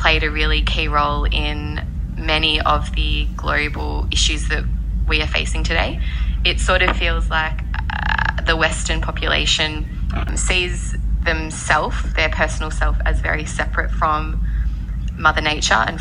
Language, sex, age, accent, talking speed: English, female, 20-39, Australian, 140 wpm